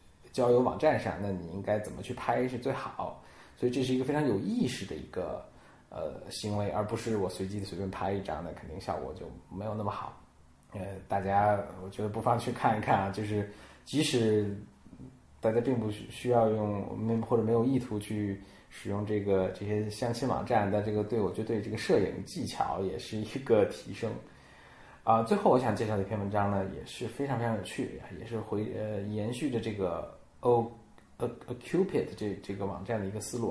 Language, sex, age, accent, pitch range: Chinese, male, 20-39, native, 100-120 Hz